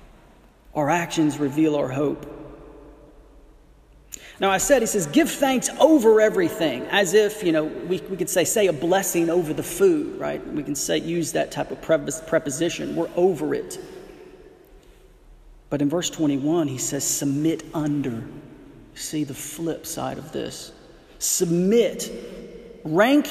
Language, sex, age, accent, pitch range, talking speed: English, male, 40-59, American, 145-205 Hz, 145 wpm